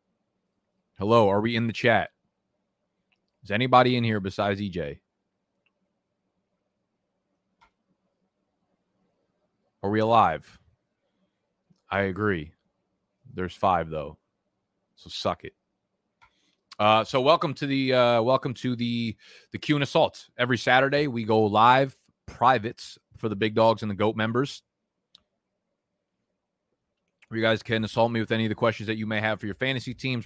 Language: English